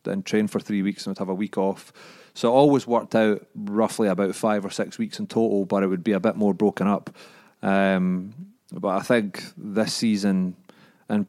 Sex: male